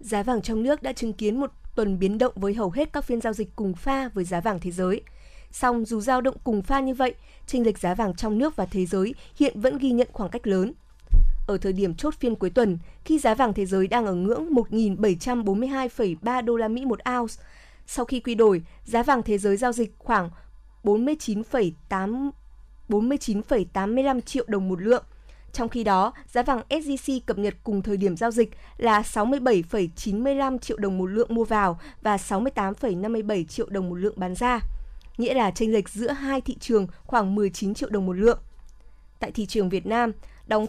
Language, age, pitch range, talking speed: Vietnamese, 20-39, 200-250 Hz, 200 wpm